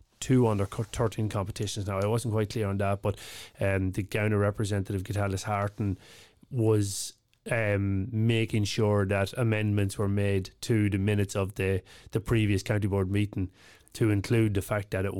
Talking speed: 165 wpm